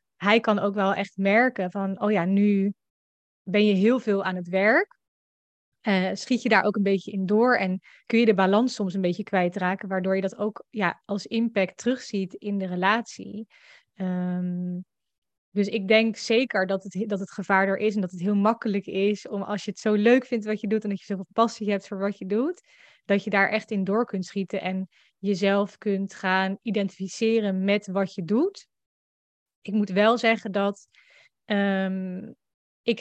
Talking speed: 195 wpm